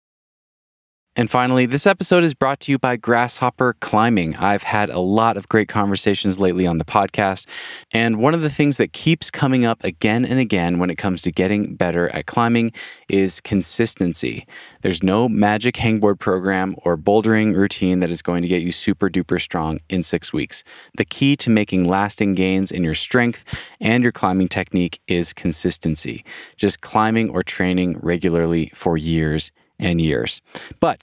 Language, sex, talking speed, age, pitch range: English, male, 170 wpm, 20-39, 90-115 Hz